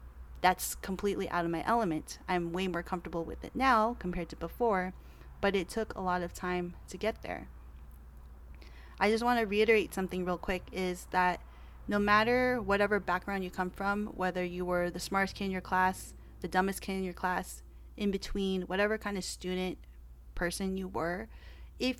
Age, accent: 30-49, American